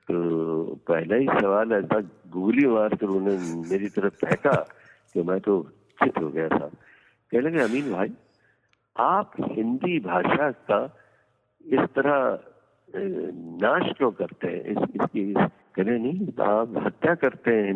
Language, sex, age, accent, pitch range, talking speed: Hindi, male, 60-79, native, 100-120 Hz, 70 wpm